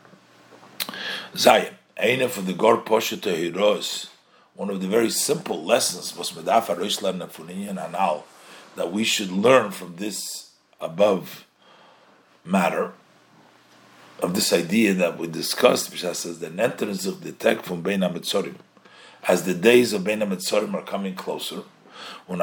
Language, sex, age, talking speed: English, male, 50-69, 135 wpm